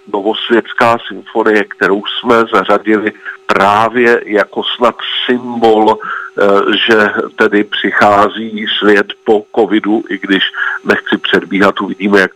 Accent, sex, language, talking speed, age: native, male, Czech, 100 wpm, 50-69